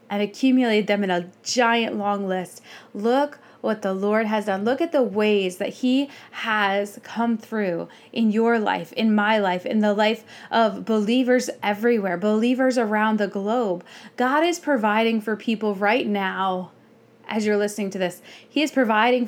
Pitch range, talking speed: 205-250 Hz, 170 wpm